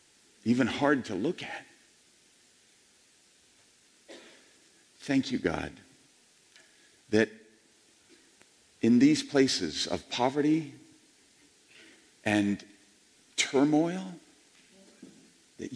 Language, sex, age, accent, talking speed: English, male, 50-69, American, 65 wpm